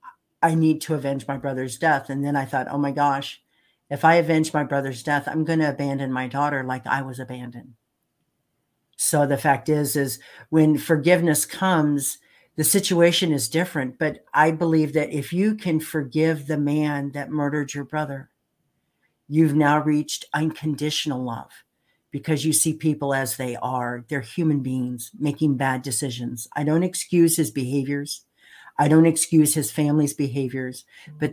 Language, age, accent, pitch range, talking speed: English, 50-69, American, 130-155 Hz, 165 wpm